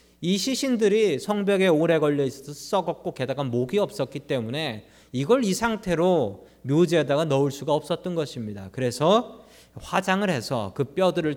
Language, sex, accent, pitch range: Korean, male, native, 125-195 Hz